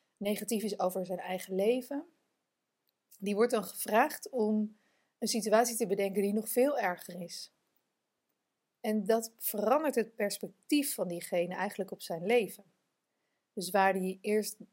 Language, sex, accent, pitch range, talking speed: Dutch, female, Dutch, 185-225 Hz, 145 wpm